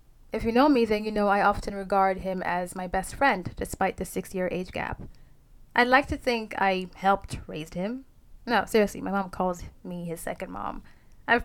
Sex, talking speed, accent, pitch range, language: female, 200 wpm, American, 195-235 Hz, English